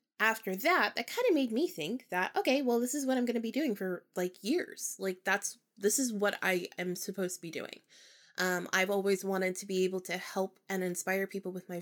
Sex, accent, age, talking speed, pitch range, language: female, American, 20-39, 235 wpm, 185-235 Hz, English